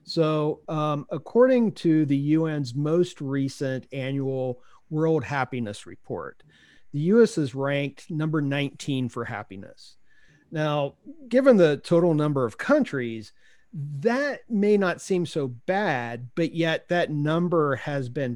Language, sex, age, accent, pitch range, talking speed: English, male, 40-59, American, 130-165 Hz, 125 wpm